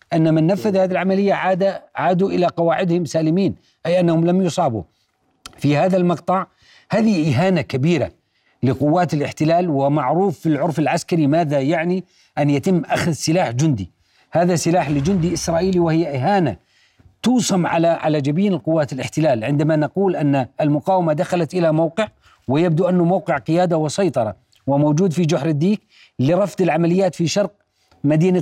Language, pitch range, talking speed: Arabic, 155-190 Hz, 140 wpm